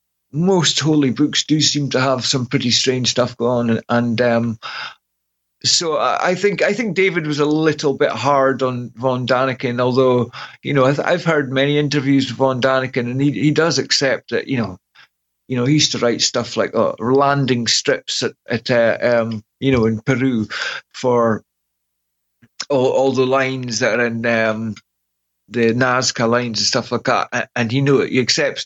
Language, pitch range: English, 115-140 Hz